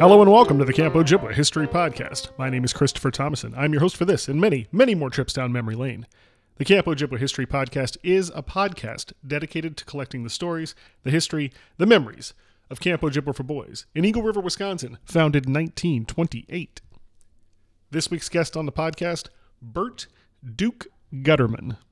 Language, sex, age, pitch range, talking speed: English, male, 30-49, 115-155 Hz, 180 wpm